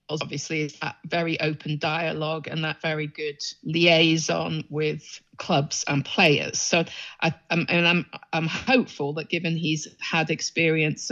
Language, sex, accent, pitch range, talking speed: English, female, British, 150-170 Hz, 145 wpm